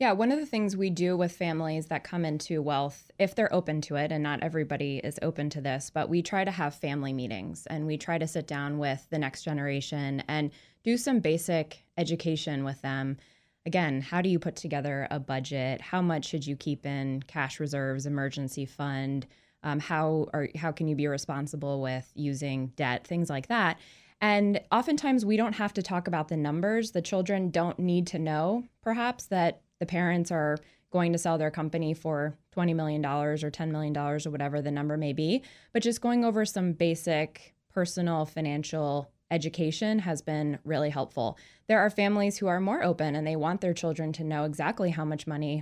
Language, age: English, 20-39